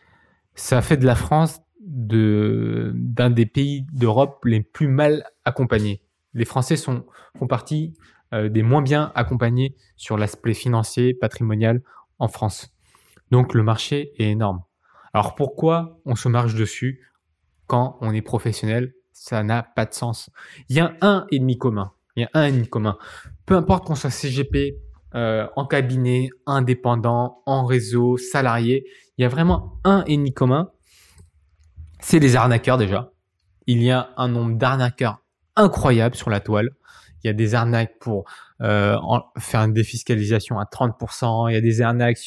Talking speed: 160 wpm